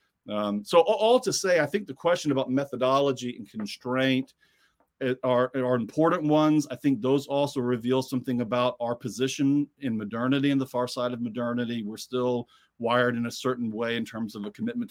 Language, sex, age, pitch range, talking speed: English, male, 40-59, 120-145 Hz, 185 wpm